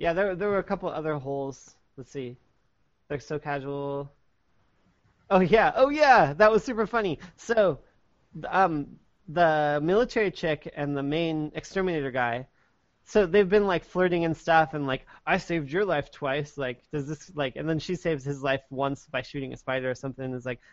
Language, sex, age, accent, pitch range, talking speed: English, male, 20-39, American, 140-195 Hz, 185 wpm